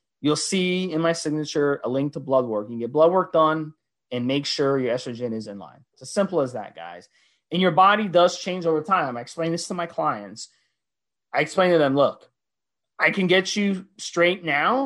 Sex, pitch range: male, 135-185 Hz